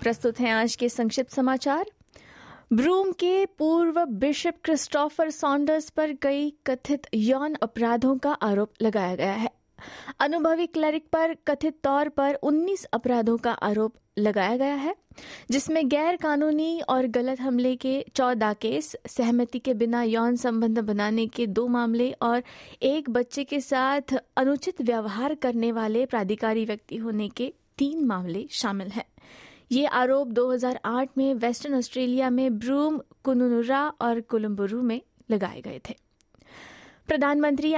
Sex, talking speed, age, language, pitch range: female, 135 wpm, 20-39, Hindi, 230-285 Hz